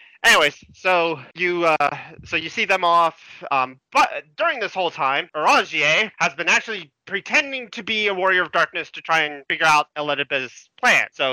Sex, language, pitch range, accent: male, English, 145-190 Hz, American